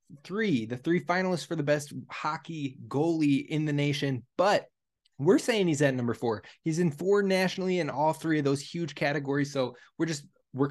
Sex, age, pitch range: male, 20-39, 140-170 Hz